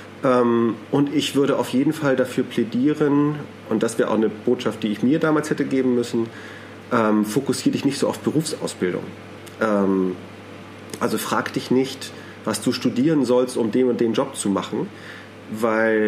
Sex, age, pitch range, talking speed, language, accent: male, 40-59, 110-130 Hz, 170 wpm, German, German